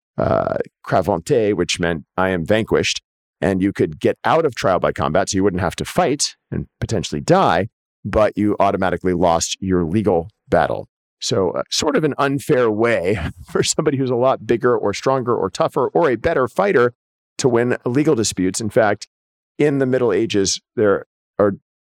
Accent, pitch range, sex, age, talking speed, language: American, 95-130 Hz, male, 40-59, 175 wpm, English